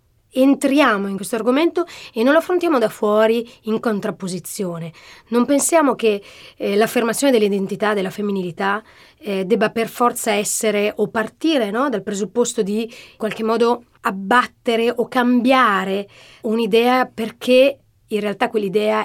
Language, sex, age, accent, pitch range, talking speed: Italian, female, 30-49, native, 200-245 Hz, 130 wpm